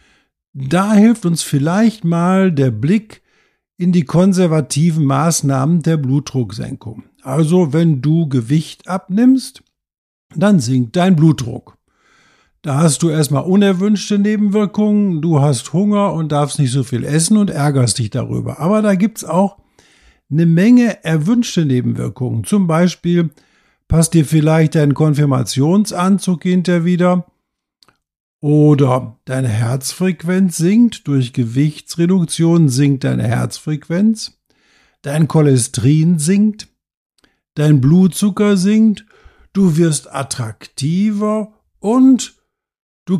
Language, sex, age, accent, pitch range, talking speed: German, male, 50-69, German, 140-190 Hz, 110 wpm